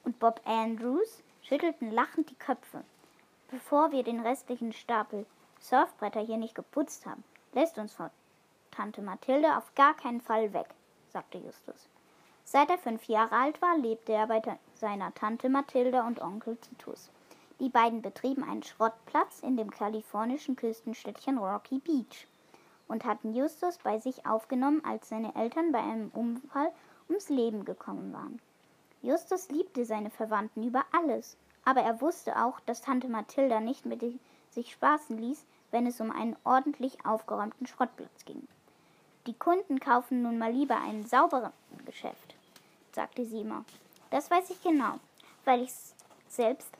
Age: 10-29